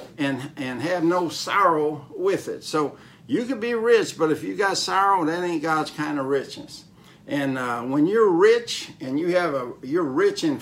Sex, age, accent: male, 60-79, American